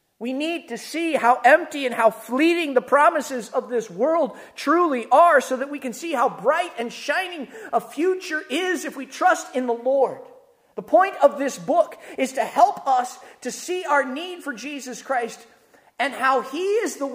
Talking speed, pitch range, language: 195 wpm, 185-270 Hz, English